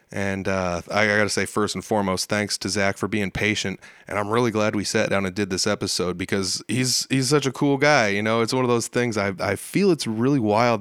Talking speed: 250 wpm